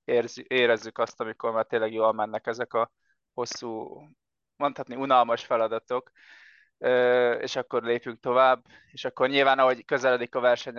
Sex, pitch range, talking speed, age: male, 115-130 Hz, 135 wpm, 20-39